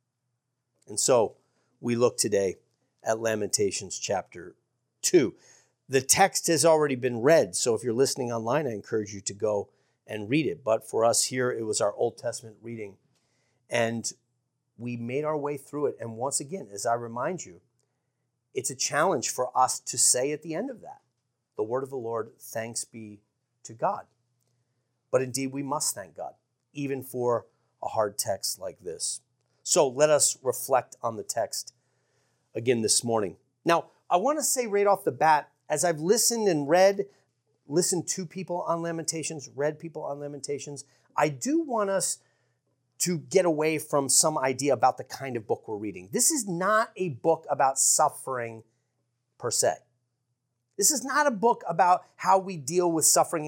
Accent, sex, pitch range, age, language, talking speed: American, male, 120-170 Hz, 40-59, English, 175 wpm